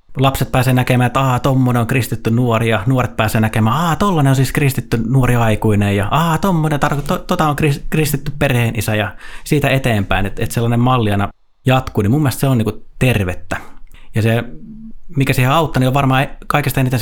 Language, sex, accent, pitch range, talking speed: Finnish, male, native, 105-140 Hz, 175 wpm